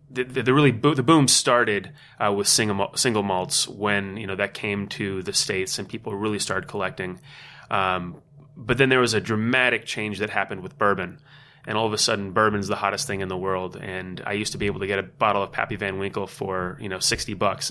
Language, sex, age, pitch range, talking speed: English, male, 30-49, 105-125 Hz, 235 wpm